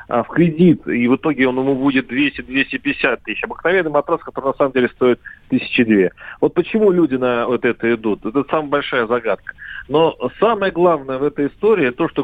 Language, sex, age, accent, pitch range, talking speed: Russian, male, 40-59, native, 135-180 Hz, 185 wpm